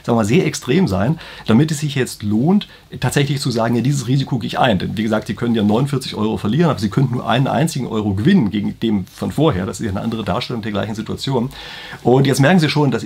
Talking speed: 255 wpm